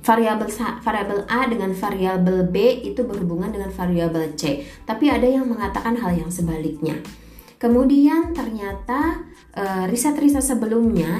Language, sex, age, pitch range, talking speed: Indonesian, female, 20-39, 175-235 Hz, 125 wpm